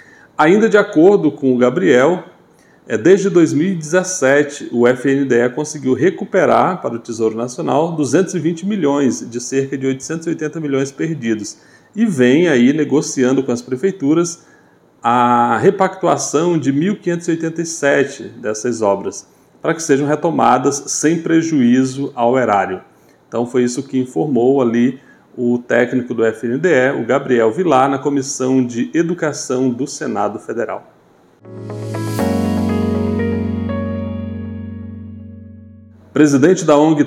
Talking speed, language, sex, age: 110 wpm, Portuguese, male, 40-59